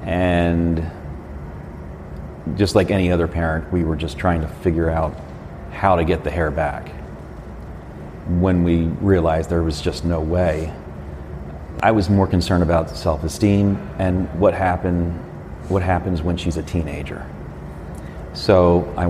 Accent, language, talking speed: American, English, 140 wpm